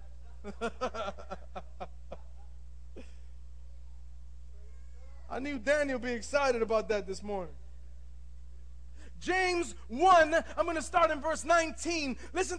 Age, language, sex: 30-49, English, male